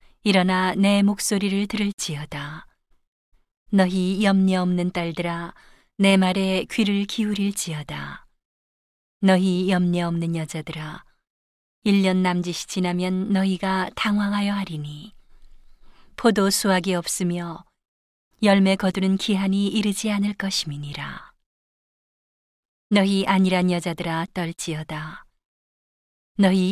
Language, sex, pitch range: Korean, female, 175-200 Hz